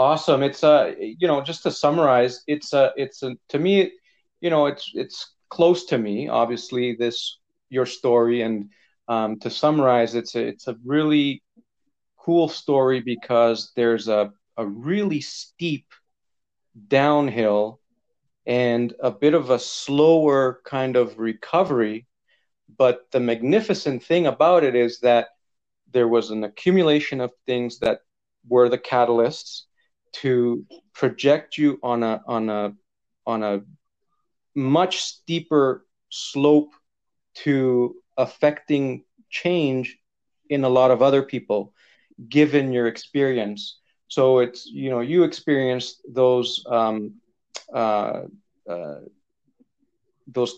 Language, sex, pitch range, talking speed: English, male, 120-150 Hz, 125 wpm